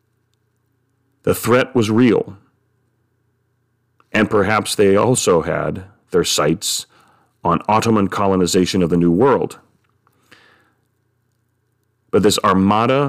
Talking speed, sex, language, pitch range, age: 95 wpm, male, English, 95-120 Hz, 40-59